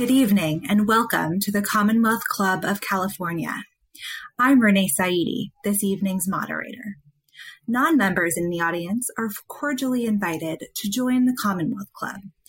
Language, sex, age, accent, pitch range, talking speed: English, female, 20-39, American, 185-250 Hz, 135 wpm